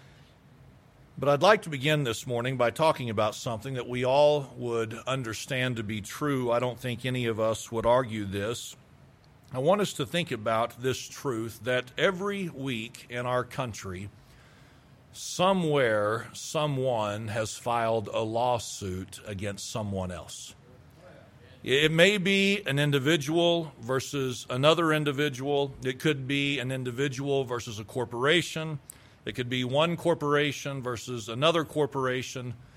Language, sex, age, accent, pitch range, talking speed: English, male, 40-59, American, 120-150 Hz, 135 wpm